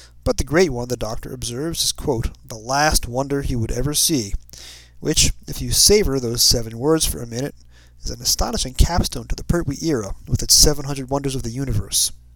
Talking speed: 200 wpm